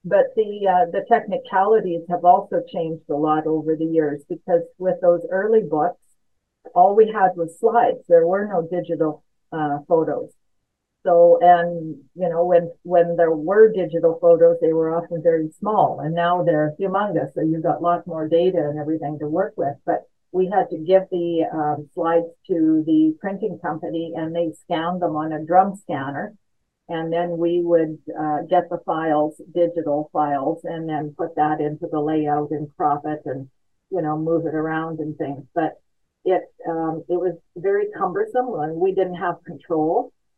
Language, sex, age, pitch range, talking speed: English, female, 50-69, 155-180 Hz, 175 wpm